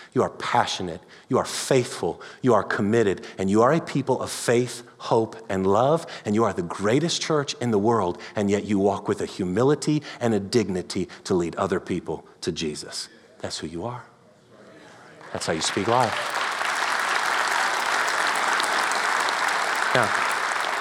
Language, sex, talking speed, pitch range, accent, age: English, male, 155 wpm, 100-125 Hz, American, 40-59